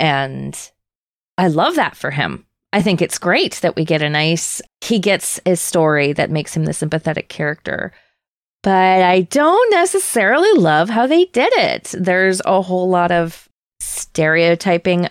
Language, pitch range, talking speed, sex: English, 155-195 Hz, 160 wpm, female